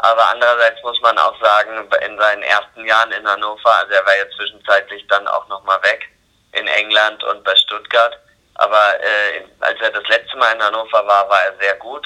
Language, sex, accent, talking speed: German, male, German, 200 wpm